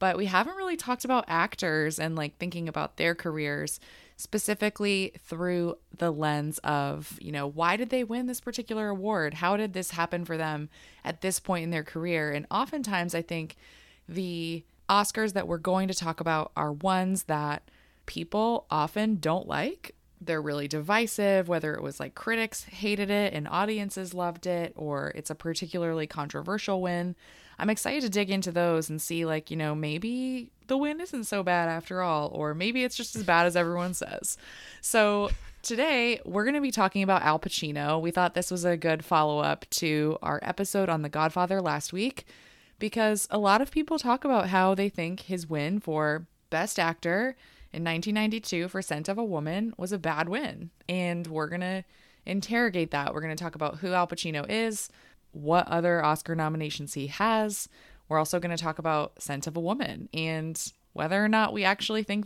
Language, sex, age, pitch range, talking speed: English, female, 20-39, 160-205 Hz, 190 wpm